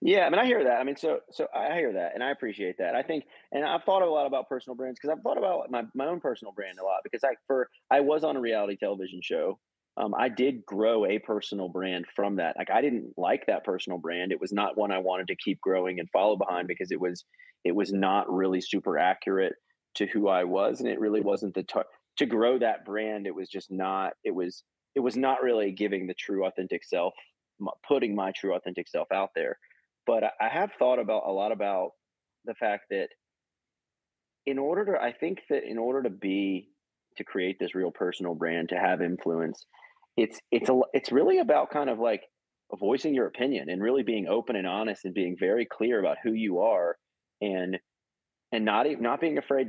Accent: American